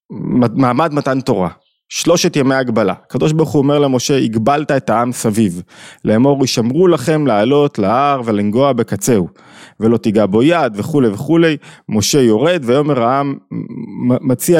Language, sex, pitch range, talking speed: Hebrew, male, 105-140 Hz, 135 wpm